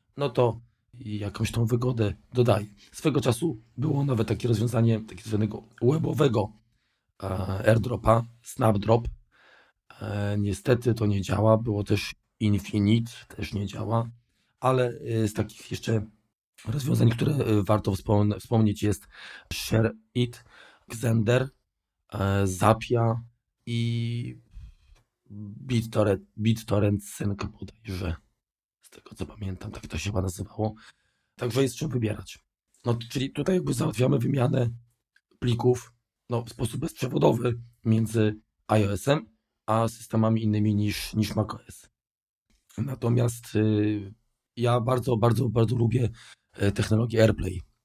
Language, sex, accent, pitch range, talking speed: Polish, male, native, 105-120 Hz, 100 wpm